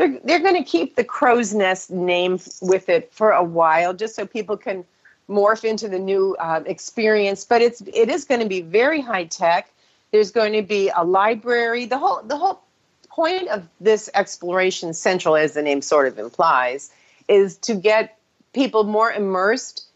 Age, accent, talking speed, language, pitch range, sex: 40-59, American, 185 wpm, English, 185-235 Hz, female